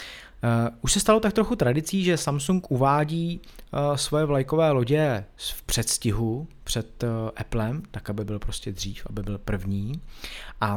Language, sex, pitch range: Czech, male, 105-145 Hz